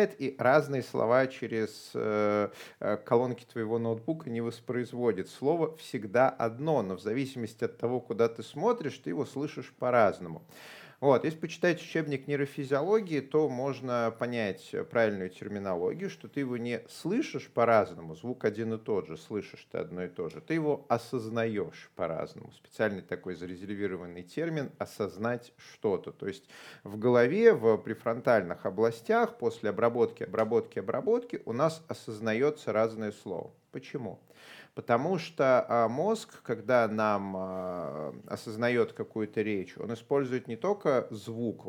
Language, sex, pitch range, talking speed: Russian, male, 105-140 Hz, 130 wpm